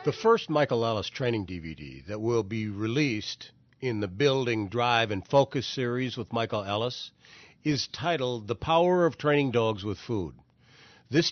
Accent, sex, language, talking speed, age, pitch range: American, male, English, 160 wpm, 50-69, 105-140 Hz